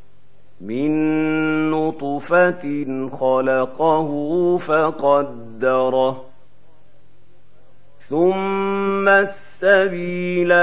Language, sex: Arabic, male